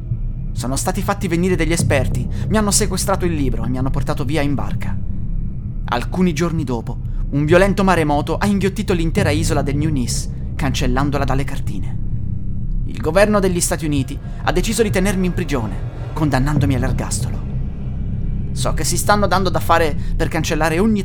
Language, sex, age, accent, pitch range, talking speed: Italian, male, 30-49, native, 120-160 Hz, 165 wpm